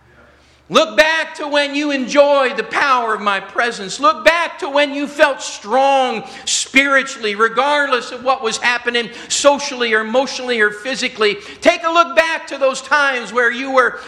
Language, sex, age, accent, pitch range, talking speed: English, male, 50-69, American, 250-290 Hz, 165 wpm